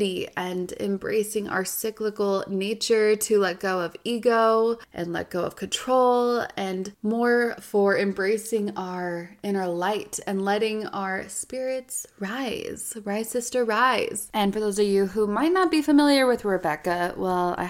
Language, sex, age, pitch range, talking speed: English, female, 20-39, 185-225 Hz, 150 wpm